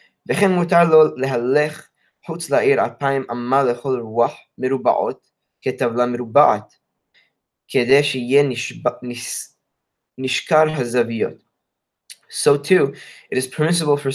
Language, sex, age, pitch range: English, male, 10-29, 120-145 Hz